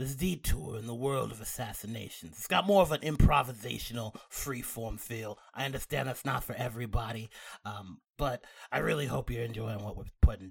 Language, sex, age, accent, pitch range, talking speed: English, male, 30-49, American, 125-195 Hz, 175 wpm